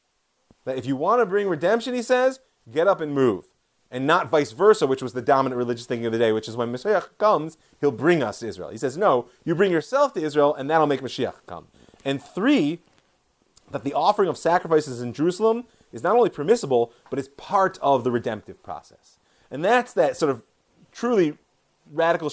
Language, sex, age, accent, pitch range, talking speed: English, male, 30-49, American, 130-175 Hz, 205 wpm